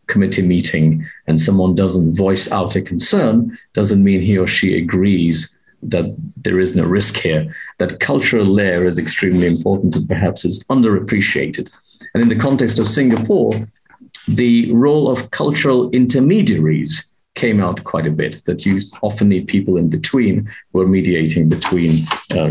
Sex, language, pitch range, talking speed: male, English, 90-130 Hz, 155 wpm